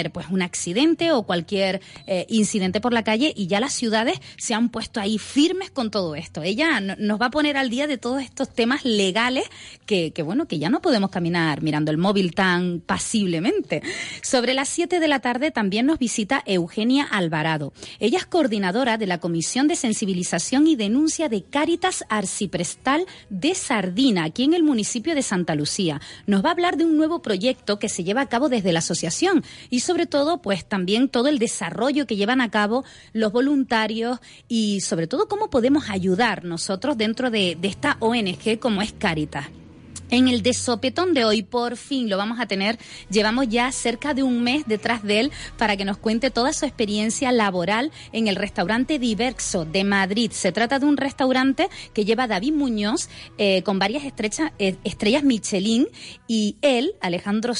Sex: female